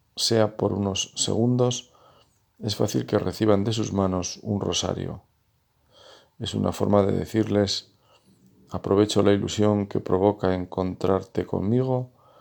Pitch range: 95-110 Hz